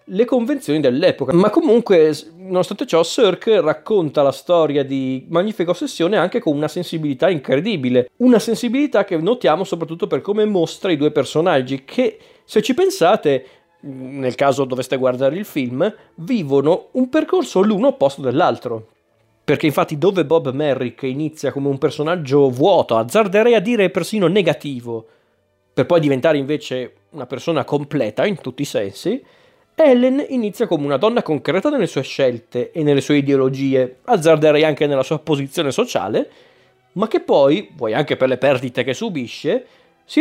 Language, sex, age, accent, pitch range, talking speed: Italian, male, 40-59, native, 135-210 Hz, 150 wpm